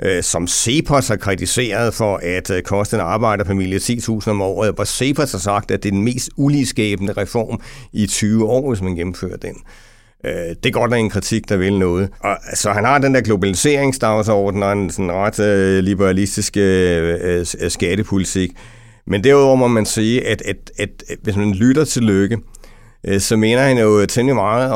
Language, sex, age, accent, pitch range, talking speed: English, male, 60-79, Danish, 100-120 Hz, 175 wpm